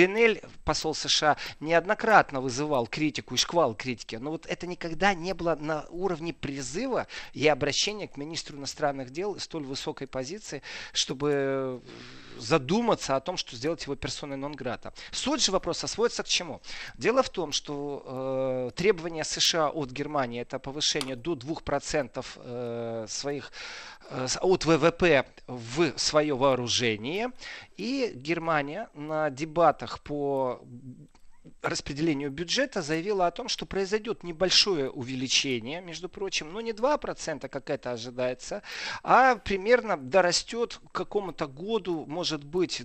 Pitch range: 140-185 Hz